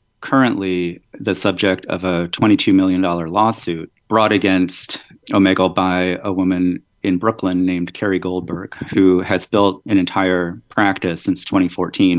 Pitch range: 90-100 Hz